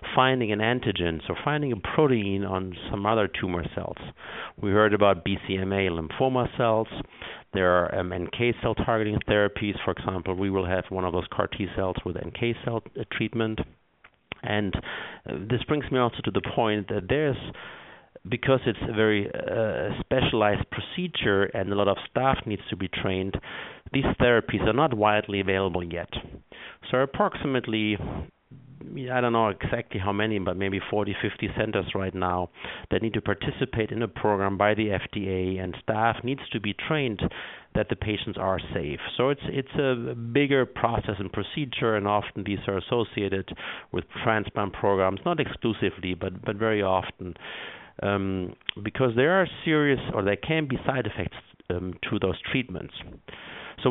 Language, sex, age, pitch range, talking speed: English, male, 50-69, 95-120 Hz, 165 wpm